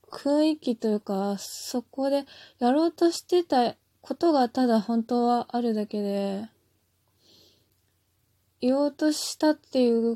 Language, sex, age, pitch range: Japanese, female, 20-39, 210-275 Hz